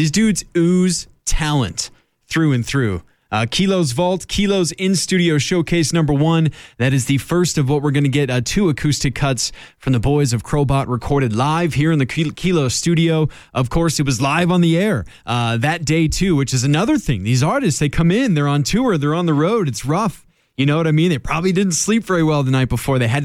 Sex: male